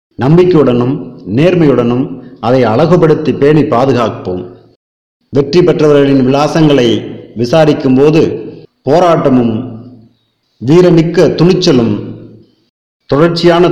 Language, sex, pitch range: English, male, 115-150 Hz